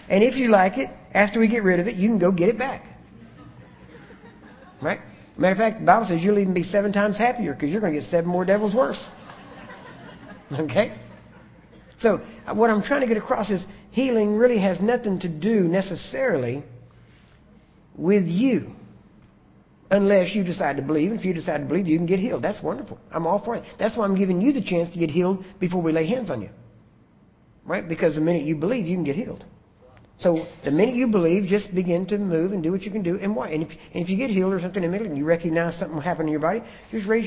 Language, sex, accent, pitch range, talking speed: English, male, American, 165-210 Hz, 230 wpm